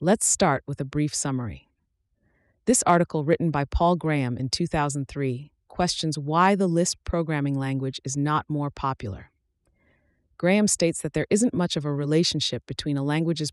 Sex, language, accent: female, English, American